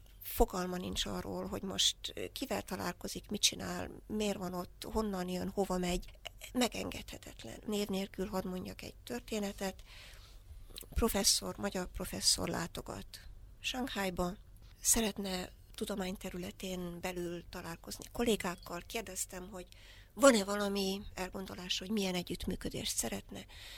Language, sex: Hungarian, female